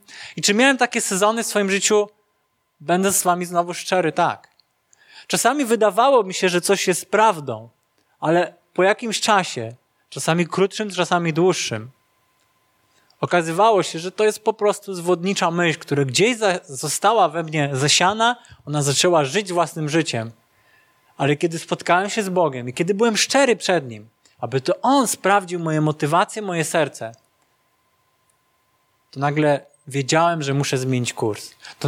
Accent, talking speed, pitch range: native, 145 wpm, 145-205 Hz